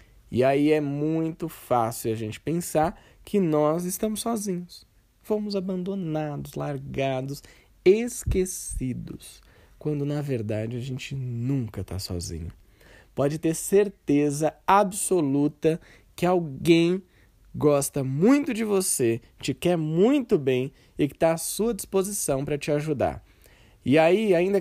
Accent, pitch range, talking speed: Brazilian, 125-185 Hz, 120 wpm